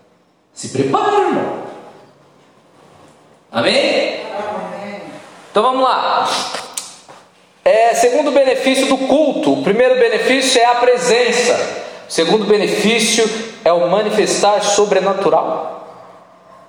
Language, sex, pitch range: Portuguese, male, 215-270 Hz